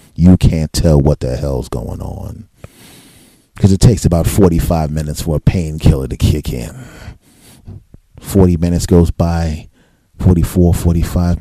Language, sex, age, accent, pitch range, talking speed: English, male, 40-59, American, 85-125 Hz, 135 wpm